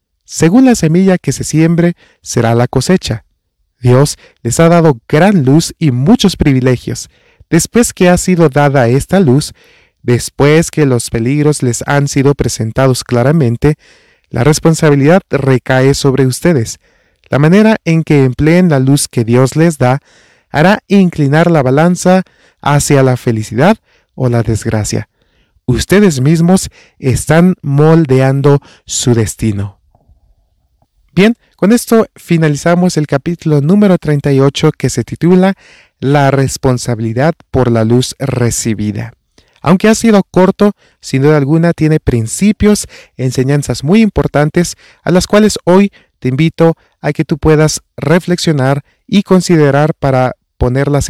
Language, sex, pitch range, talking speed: Spanish, male, 125-170 Hz, 130 wpm